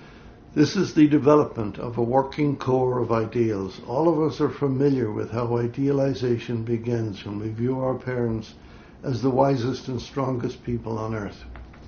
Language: English